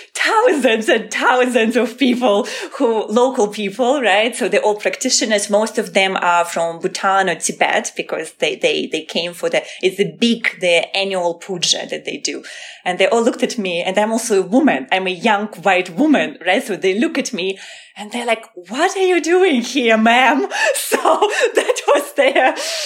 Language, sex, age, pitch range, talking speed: English, female, 20-39, 185-245 Hz, 190 wpm